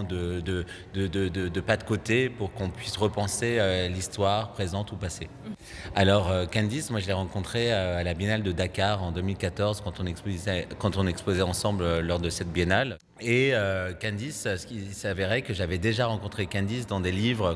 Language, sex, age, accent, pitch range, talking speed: French, male, 30-49, French, 90-110 Hz, 180 wpm